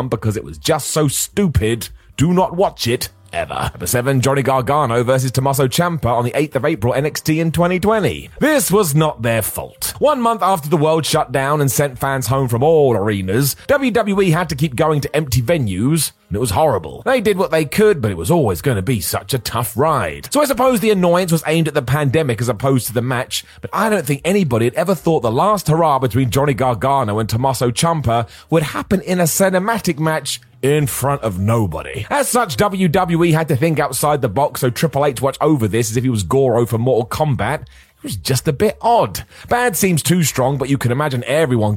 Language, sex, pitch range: English, male, 120-165 Hz